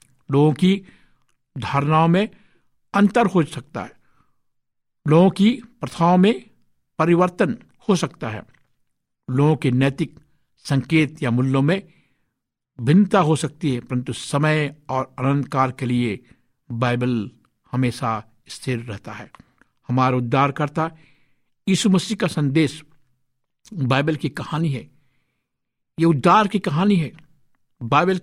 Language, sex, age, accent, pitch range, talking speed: Hindi, male, 60-79, native, 130-165 Hz, 115 wpm